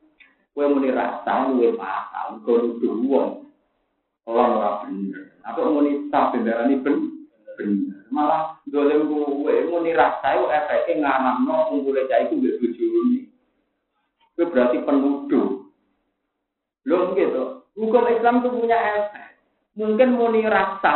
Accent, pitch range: native, 165-260 Hz